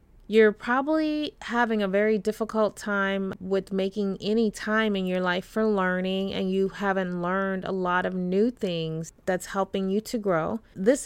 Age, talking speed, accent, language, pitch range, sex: 30-49, 170 wpm, American, English, 185-220 Hz, female